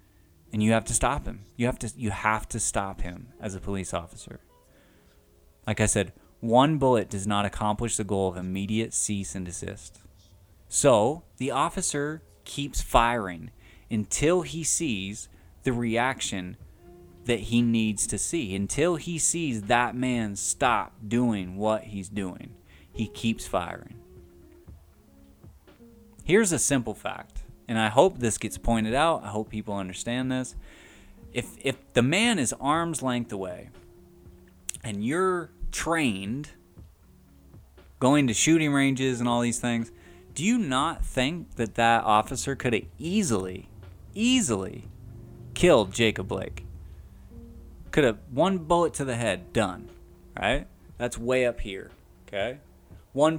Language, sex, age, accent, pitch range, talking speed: English, male, 20-39, American, 90-120 Hz, 140 wpm